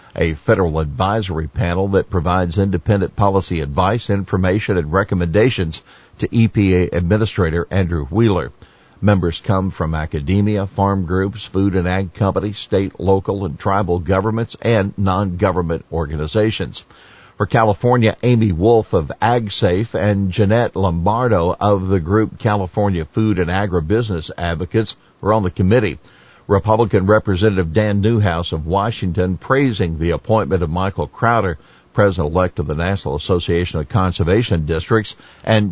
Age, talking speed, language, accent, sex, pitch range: 50-69, 130 wpm, English, American, male, 90-115 Hz